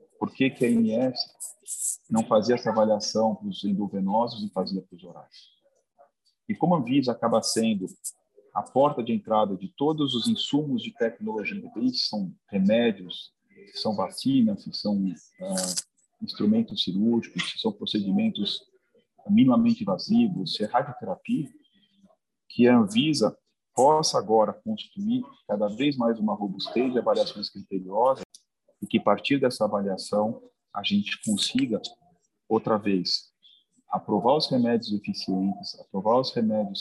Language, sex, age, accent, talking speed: Portuguese, male, 40-59, Brazilian, 135 wpm